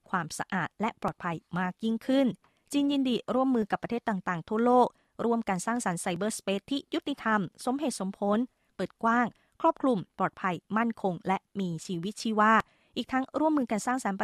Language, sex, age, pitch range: Thai, female, 20-39, 195-250 Hz